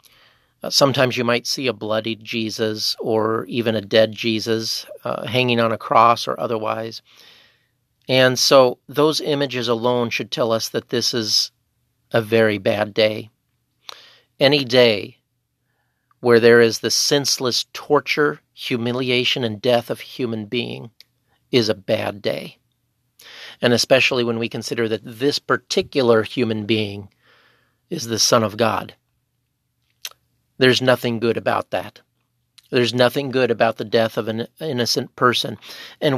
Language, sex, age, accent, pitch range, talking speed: English, male, 40-59, American, 115-130 Hz, 140 wpm